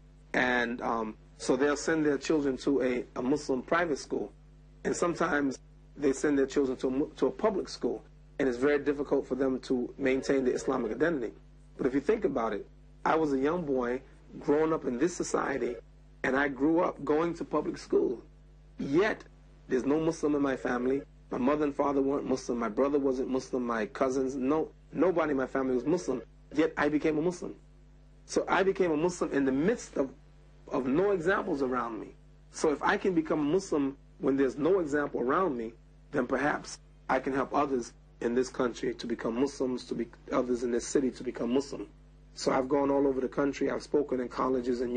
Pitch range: 130-150 Hz